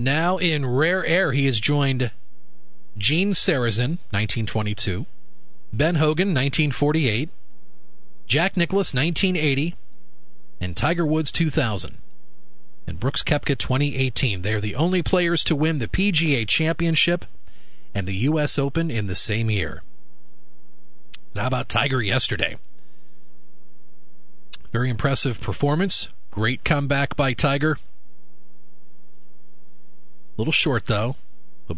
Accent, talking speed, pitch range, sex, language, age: American, 110 wpm, 100-160 Hz, male, English, 40-59